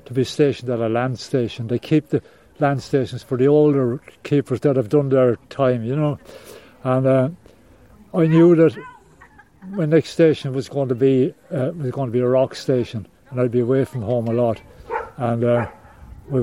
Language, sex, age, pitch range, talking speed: English, male, 60-79, 125-150 Hz, 195 wpm